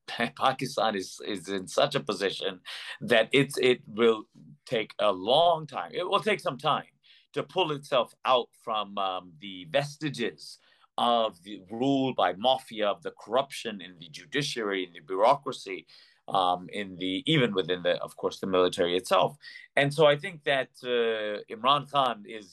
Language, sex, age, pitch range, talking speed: English, male, 30-49, 100-150 Hz, 160 wpm